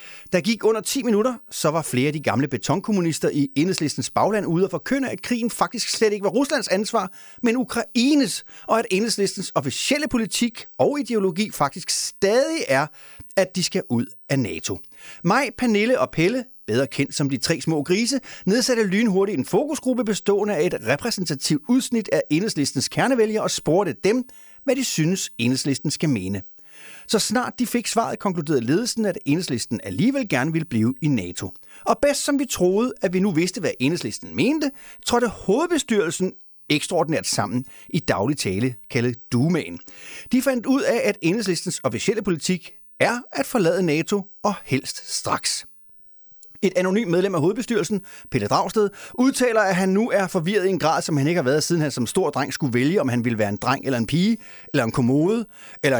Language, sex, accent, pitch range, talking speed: Danish, male, native, 145-230 Hz, 180 wpm